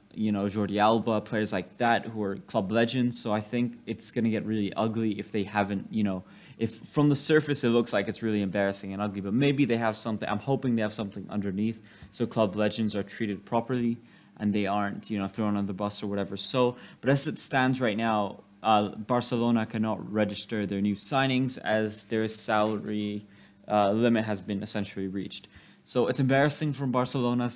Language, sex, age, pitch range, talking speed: English, male, 20-39, 105-120 Hz, 205 wpm